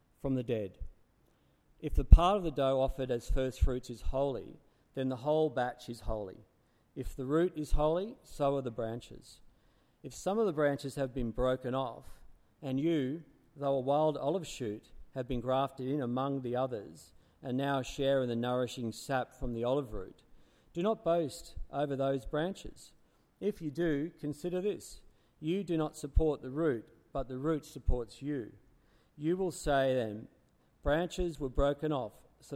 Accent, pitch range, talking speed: Australian, 125-155 Hz, 175 wpm